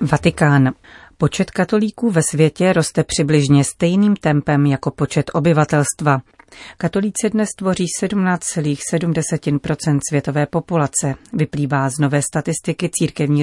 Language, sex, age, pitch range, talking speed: Czech, female, 40-59, 145-170 Hz, 105 wpm